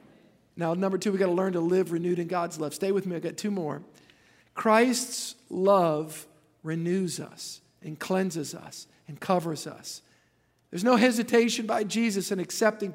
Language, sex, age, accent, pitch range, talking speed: English, male, 50-69, American, 190-265 Hz, 170 wpm